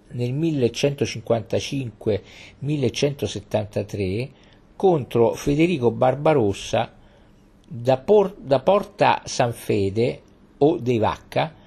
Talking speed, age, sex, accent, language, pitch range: 60 wpm, 50-69, male, native, Italian, 100-140 Hz